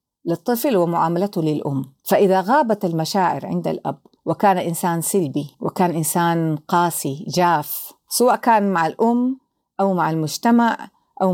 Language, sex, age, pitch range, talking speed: Arabic, female, 50-69, 160-215 Hz, 120 wpm